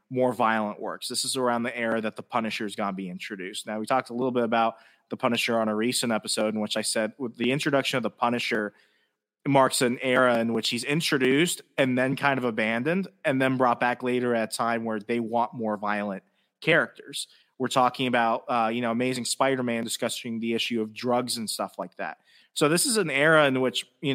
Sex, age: male, 30-49